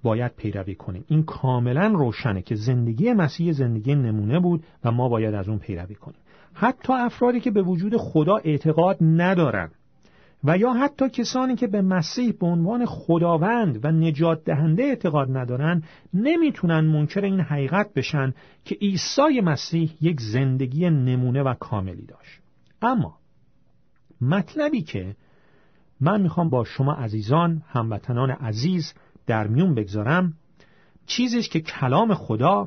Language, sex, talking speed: Persian, male, 135 wpm